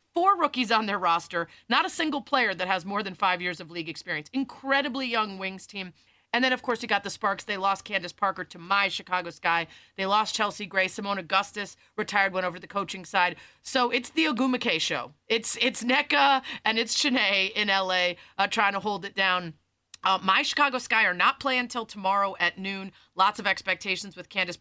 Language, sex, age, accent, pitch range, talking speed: English, female, 30-49, American, 180-230 Hz, 205 wpm